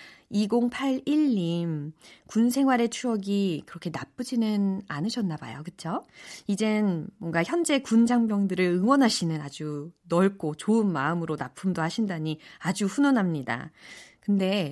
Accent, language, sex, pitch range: native, Korean, female, 170-250 Hz